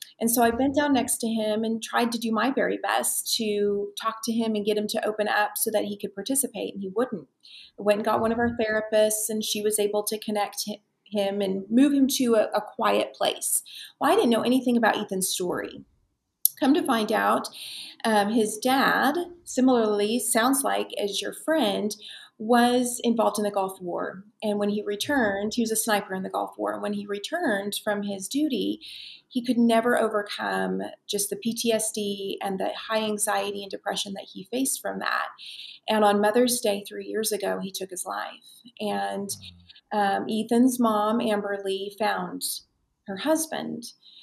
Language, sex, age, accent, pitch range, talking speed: English, female, 30-49, American, 200-230 Hz, 190 wpm